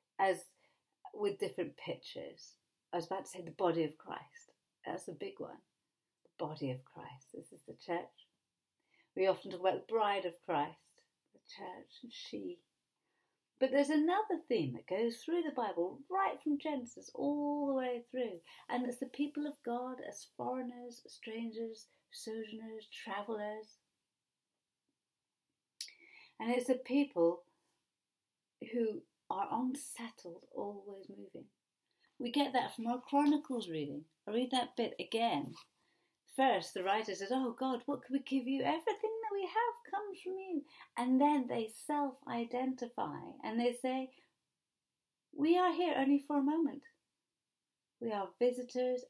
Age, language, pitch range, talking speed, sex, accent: 50-69, English, 220-290 Hz, 145 wpm, female, British